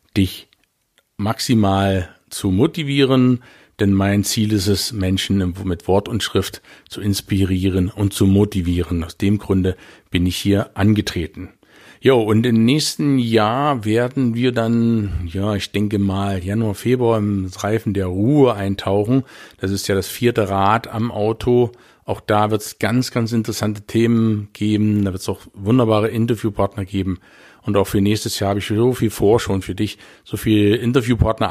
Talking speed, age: 160 wpm, 50-69